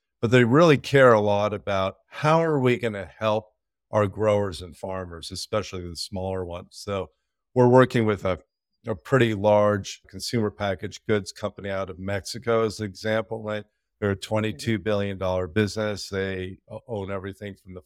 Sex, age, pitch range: male, 50-69, 95-120 Hz